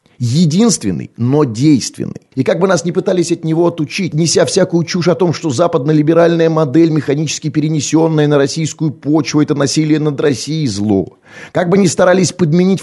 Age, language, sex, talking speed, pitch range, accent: 30-49, Russian, male, 165 wpm, 110-165 Hz, native